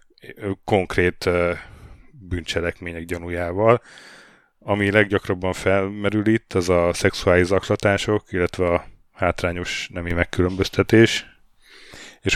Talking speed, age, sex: 85 wpm, 30-49, male